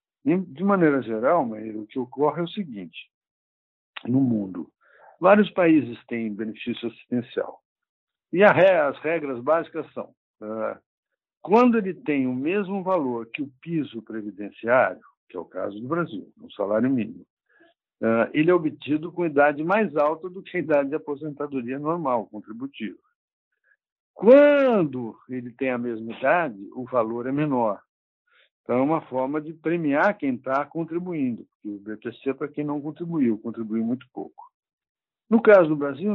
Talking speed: 150 wpm